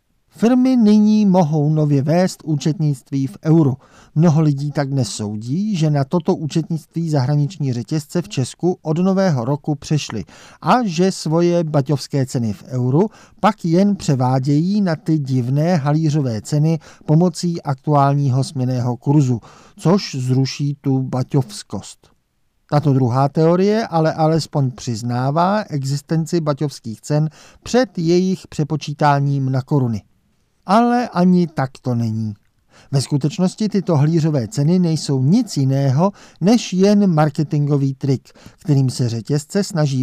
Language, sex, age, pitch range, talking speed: Czech, male, 50-69, 130-175 Hz, 125 wpm